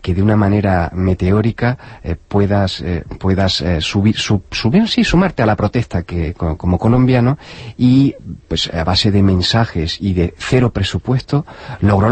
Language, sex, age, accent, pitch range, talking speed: Spanish, male, 40-59, Spanish, 95-115 Hz, 165 wpm